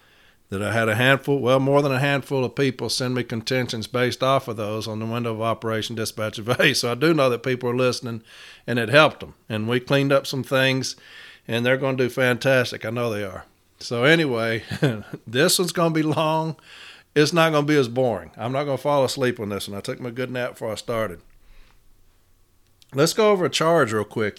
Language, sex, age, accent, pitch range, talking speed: English, male, 50-69, American, 110-140 Hz, 230 wpm